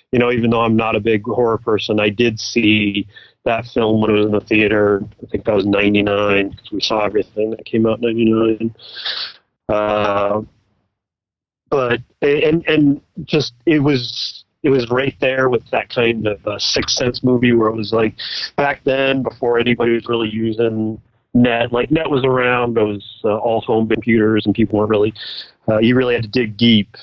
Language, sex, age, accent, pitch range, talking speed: English, male, 30-49, American, 105-125 Hz, 195 wpm